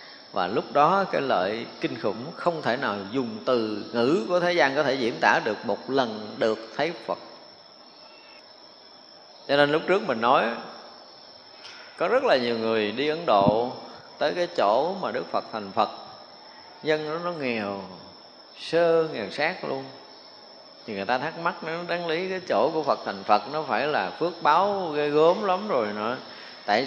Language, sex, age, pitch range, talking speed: Vietnamese, male, 20-39, 120-155 Hz, 180 wpm